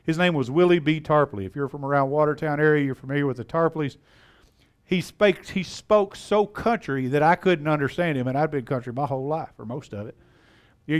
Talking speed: 220 wpm